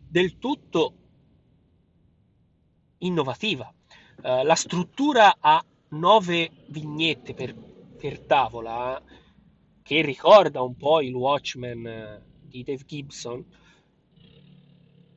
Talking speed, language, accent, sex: 90 wpm, Italian, native, male